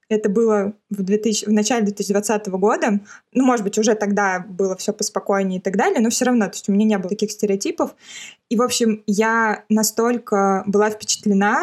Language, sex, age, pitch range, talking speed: Russian, female, 20-39, 200-225 Hz, 190 wpm